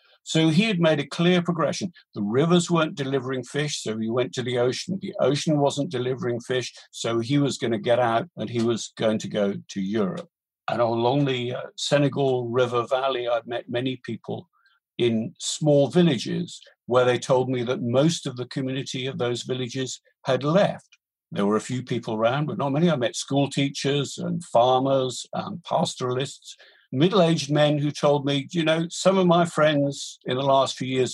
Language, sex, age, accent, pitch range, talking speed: English, male, 50-69, British, 125-150 Hz, 195 wpm